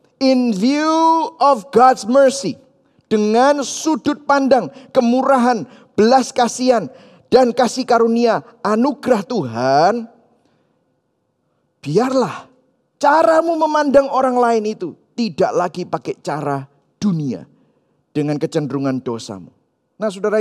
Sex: male